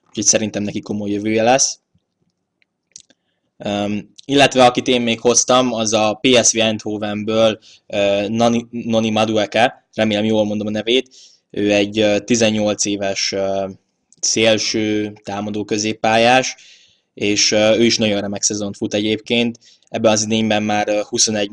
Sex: male